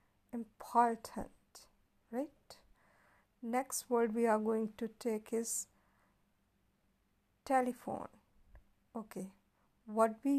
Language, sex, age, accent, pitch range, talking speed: Hindi, female, 50-69, native, 210-260 Hz, 80 wpm